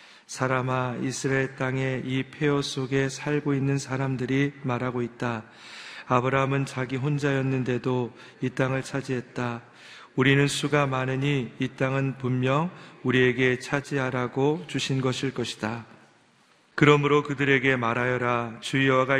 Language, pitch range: Korean, 120-140 Hz